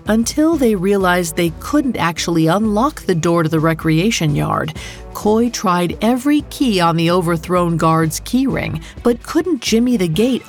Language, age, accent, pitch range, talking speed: English, 40-59, American, 165-235 Hz, 160 wpm